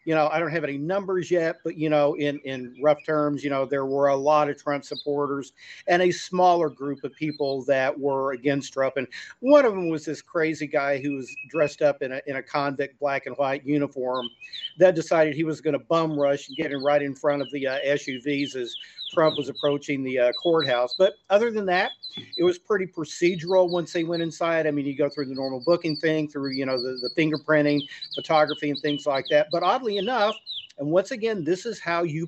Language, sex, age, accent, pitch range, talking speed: English, male, 50-69, American, 140-170 Hz, 225 wpm